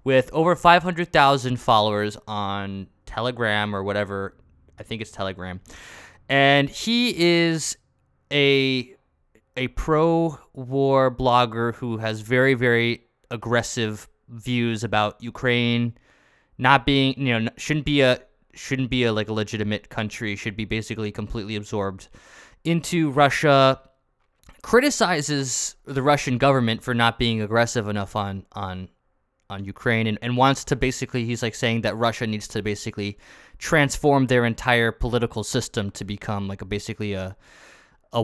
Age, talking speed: 20-39, 135 wpm